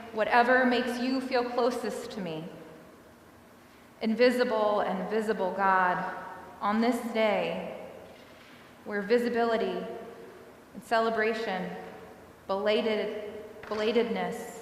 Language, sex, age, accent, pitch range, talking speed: English, female, 20-39, American, 200-235 Hz, 80 wpm